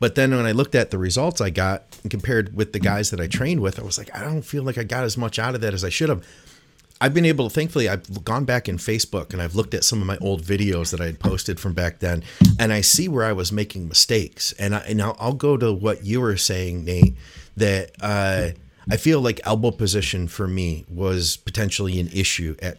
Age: 30-49